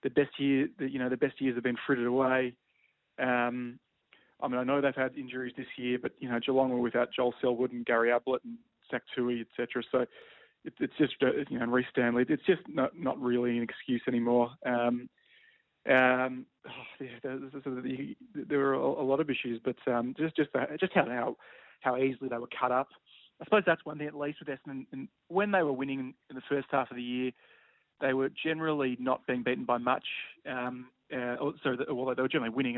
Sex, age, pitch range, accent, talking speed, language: male, 20-39, 125-135 Hz, Australian, 220 wpm, English